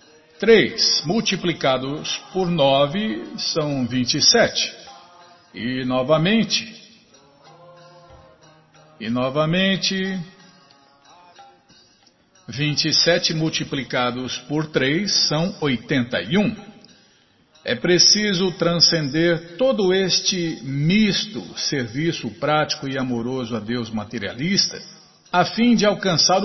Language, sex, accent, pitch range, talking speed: Portuguese, male, Brazilian, 150-190 Hz, 75 wpm